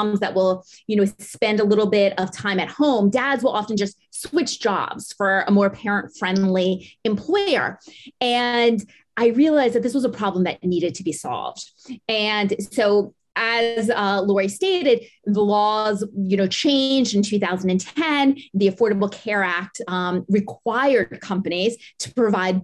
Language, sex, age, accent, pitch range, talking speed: English, female, 30-49, American, 200-265 Hz, 155 wpm